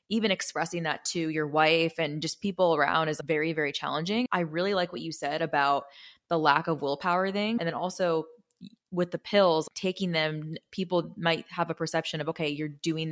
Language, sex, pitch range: English, female, 155-180 Hz